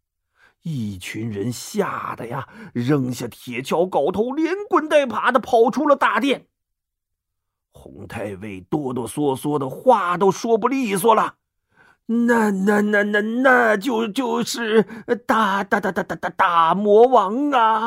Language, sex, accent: Chinese, male, native